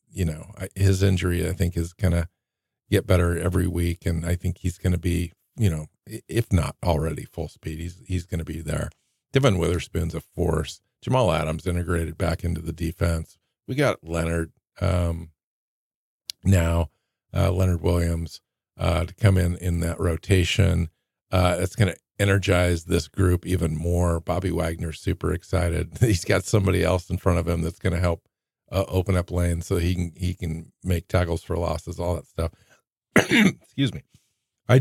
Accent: American